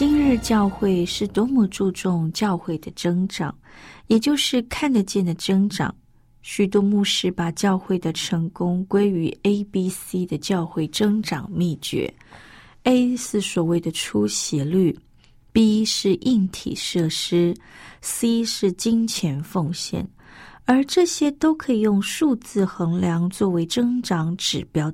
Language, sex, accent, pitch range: Chinese, female, native, 170-220 Hz